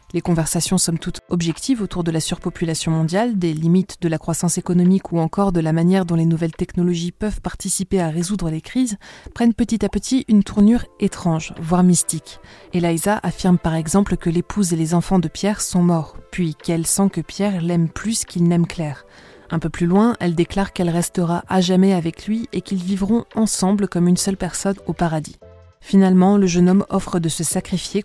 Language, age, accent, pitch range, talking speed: French, 20-39, French, 170-195 Hz, 200 wpm